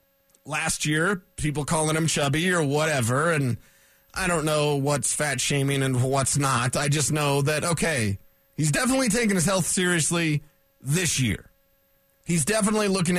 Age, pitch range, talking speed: 30-49, 135-180 Hz, 155 wpm